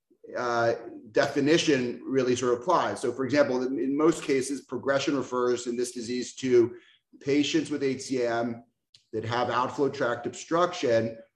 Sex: male